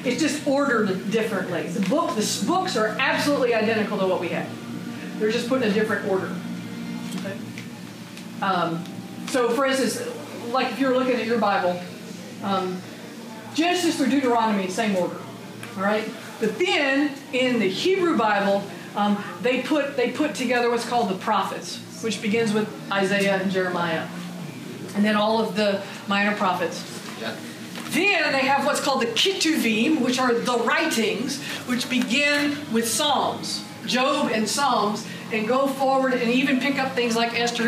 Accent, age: American, 40-59